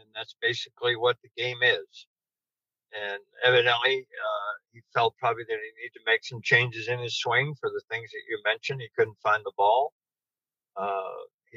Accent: American